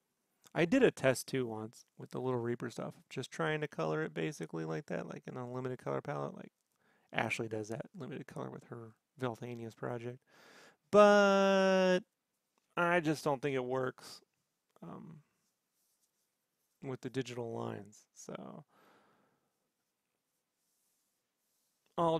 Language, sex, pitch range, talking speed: English, male, 120-155 Hz, 130 wpm